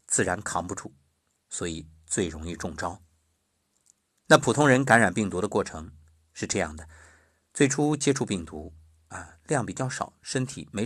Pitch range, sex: 80-130 Hz, male